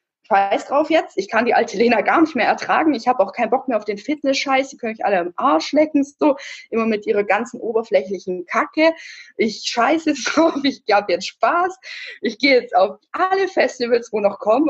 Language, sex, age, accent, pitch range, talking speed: German, female, 20-39, German, 200-265 Hz, 205 wpm